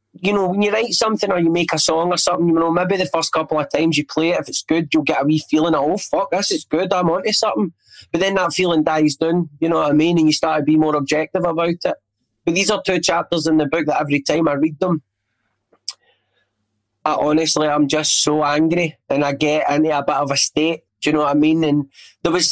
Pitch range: 150-170 Hz